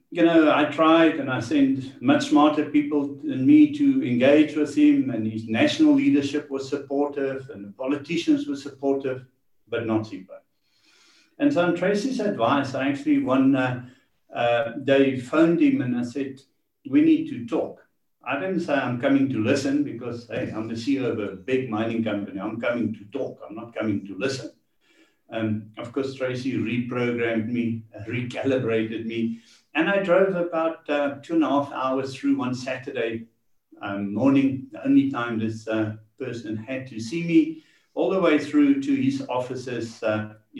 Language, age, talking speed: English, 60-79, 175 wpm